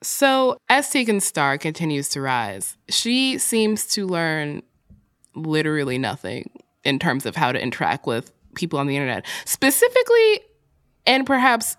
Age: 20-39